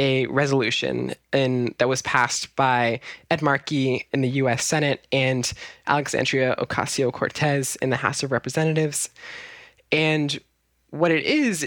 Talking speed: 125 wpm